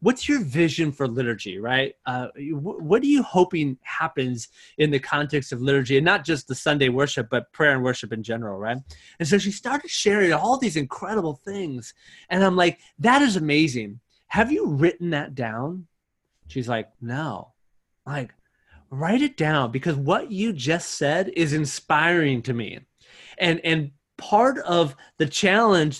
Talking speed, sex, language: 165 wpm, male, English